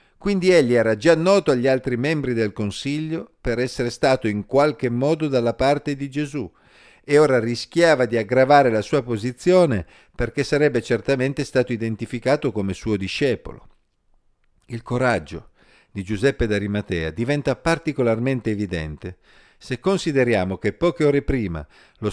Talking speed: 140 wpm